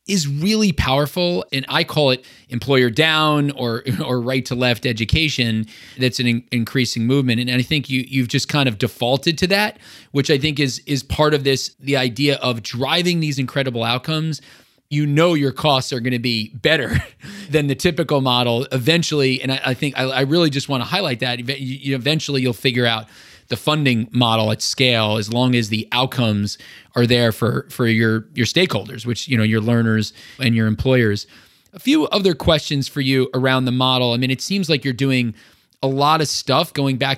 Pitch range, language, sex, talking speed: 120-145 Hz, English, male, 200 wpm